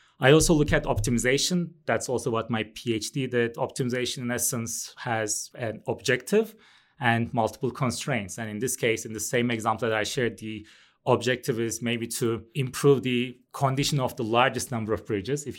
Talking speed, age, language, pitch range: 175 wpm, 30-49, English, 110-135 Hz